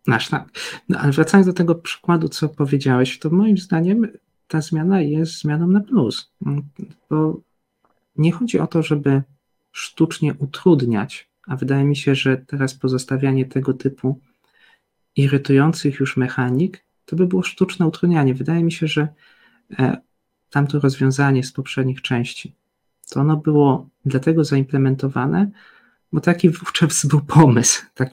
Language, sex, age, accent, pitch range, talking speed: Polish, male, 40-59, native, 135-165 Hz, 135 wpm